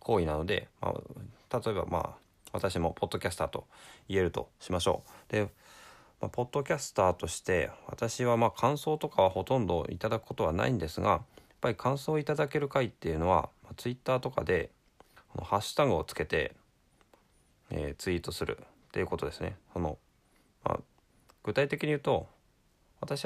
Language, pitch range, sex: Japanese, 85-125 Hz, male